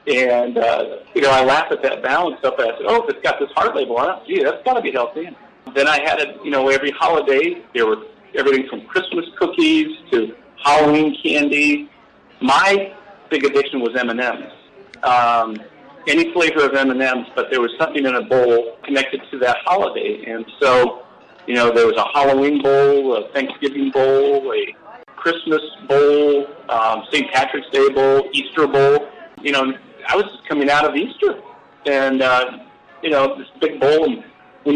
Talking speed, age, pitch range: 180 wpm, 50-69, 135-215 Hz